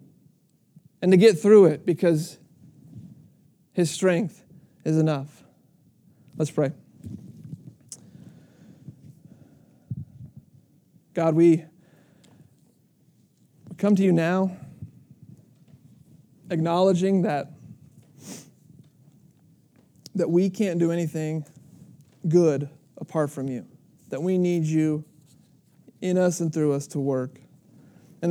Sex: male